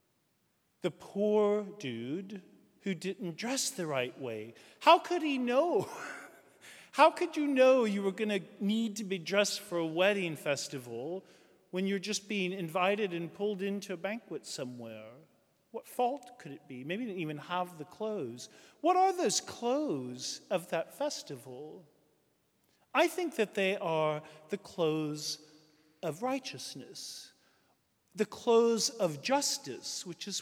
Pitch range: 165-230 Hz